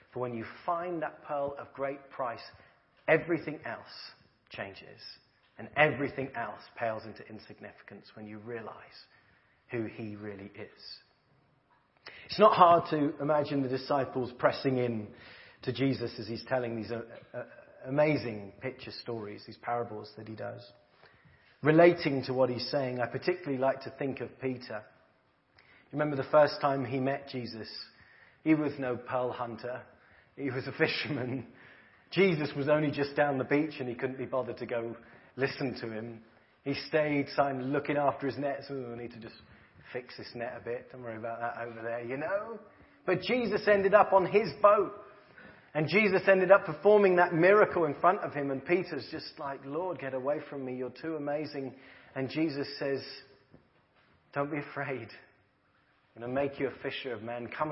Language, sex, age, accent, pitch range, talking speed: English, male, 40-59, British, 120-150 Hz, 170 wpm